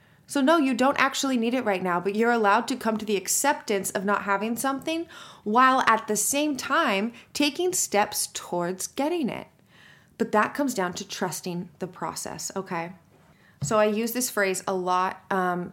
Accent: American